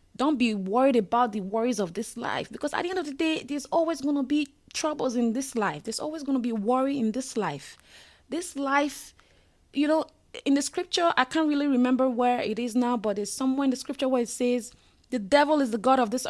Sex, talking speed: female, 240 wpm